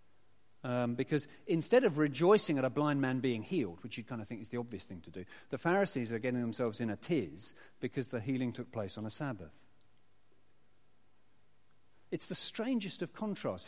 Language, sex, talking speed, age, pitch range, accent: English, male, 190 wpm, 50-69, 110-160 Hz, British